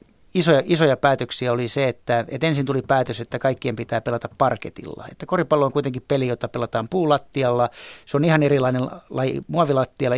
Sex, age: male, 30-49